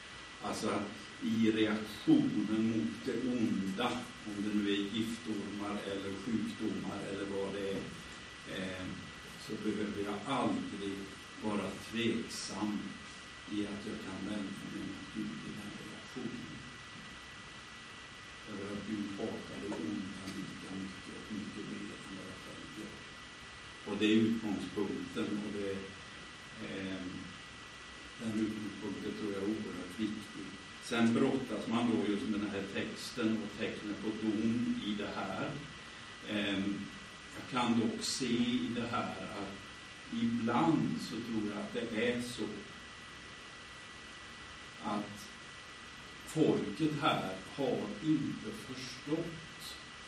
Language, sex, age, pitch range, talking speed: Swedish, male, 60-79, 100-115 Hz, 120 wpm